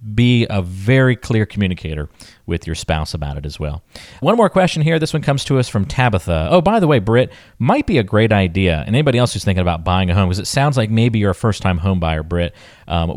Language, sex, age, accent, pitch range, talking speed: English, male, 40-59, American, 85-115 Hz, 240 wpm